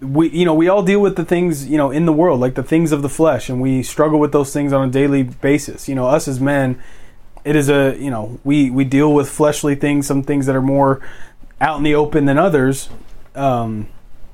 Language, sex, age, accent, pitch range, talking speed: English, male, 30-49, American, 130-155 Hz, 245 wpm